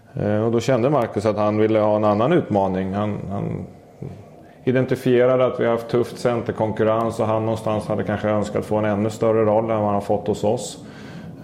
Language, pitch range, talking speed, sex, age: Swedish, 105-115 Hz, 200 wpm, male, 30-49